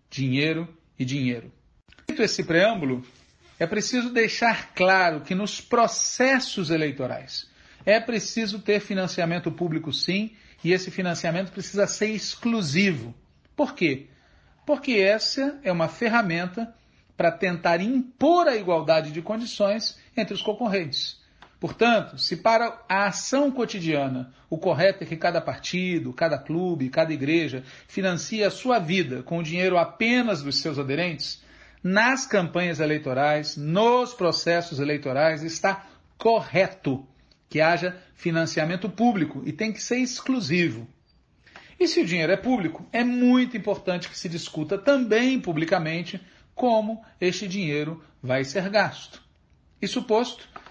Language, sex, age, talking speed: Portuguese, male, 40-59, 130 wpm